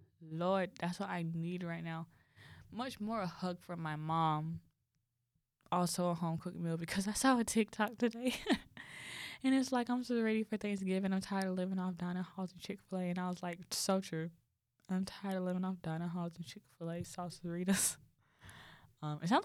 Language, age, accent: English, 10-29, American